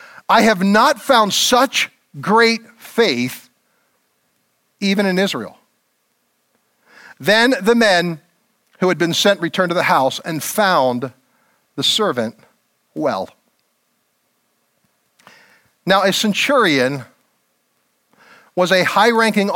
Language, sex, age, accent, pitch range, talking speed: English, male, 50-69, American, 175-230 Hz, 100 wpm